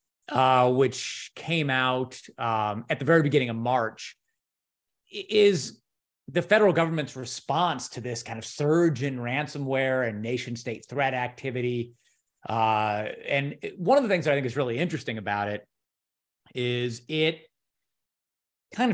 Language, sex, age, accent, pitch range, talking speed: English, male, 30-49, American, 120-155 Hz, 145 wpm